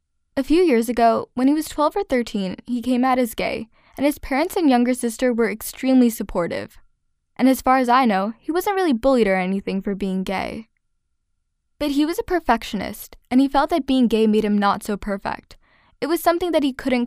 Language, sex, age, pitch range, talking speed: English, female, 10-29, 210-270 Hz, 215 wpm